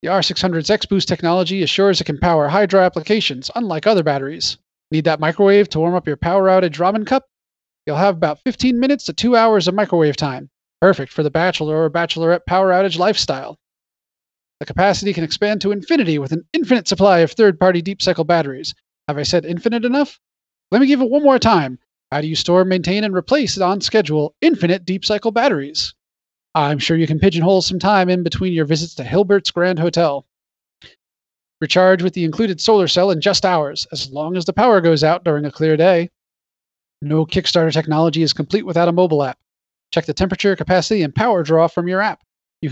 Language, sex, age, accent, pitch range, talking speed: English, male, 30-49, American, 155-195 Hz, 190 wpm